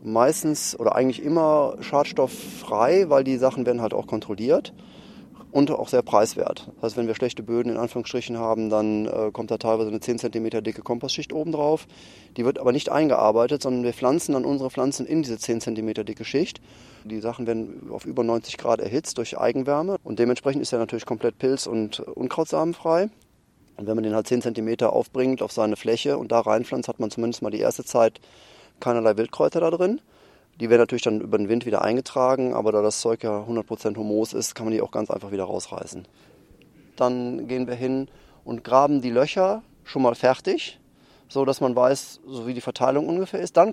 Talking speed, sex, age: 200 wpm, male, 30-49